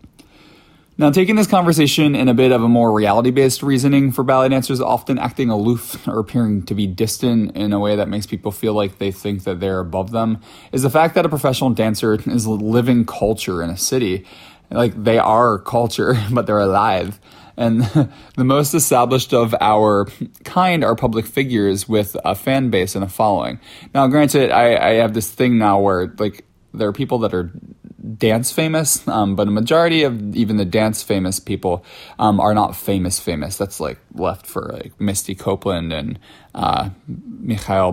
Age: 20-39